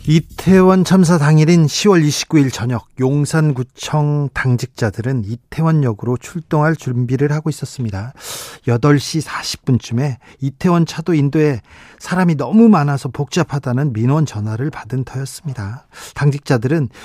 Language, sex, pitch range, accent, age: Korean, male, 125-160 Hz, native, 40-59